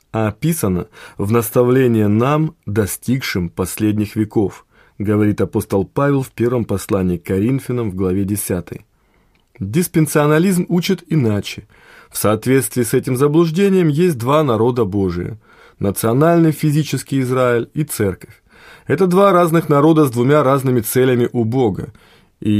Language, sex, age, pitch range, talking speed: Russian, male, 20-39, 110-150 Hz, 125 wpm